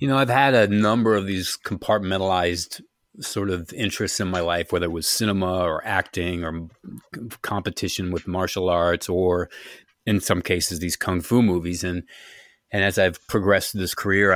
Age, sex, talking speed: 30-49, male, 175 wpm